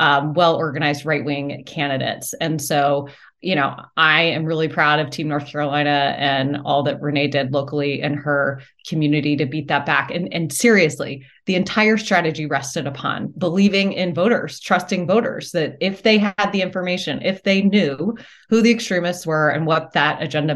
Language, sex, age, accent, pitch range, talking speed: English, female, 30-49, American, 145-185 Hz, 170 wpm